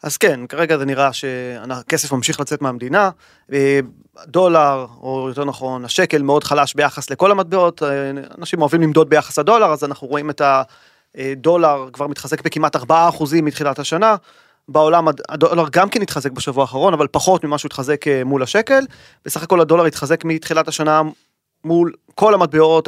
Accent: Lebanese